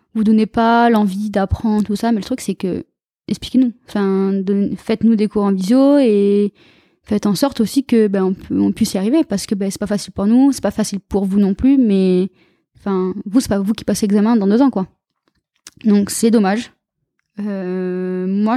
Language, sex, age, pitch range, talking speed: French, female, 20-39, 195-230 Hz, 220 wpm